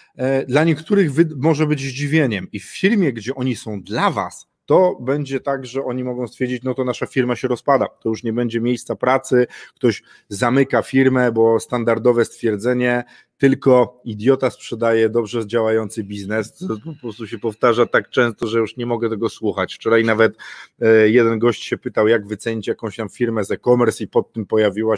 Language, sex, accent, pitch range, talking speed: Polish, male, native, 115-135 Hz, 180 wpm